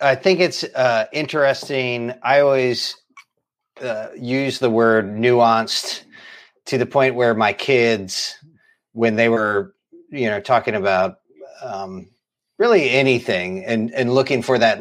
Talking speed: 135 wpm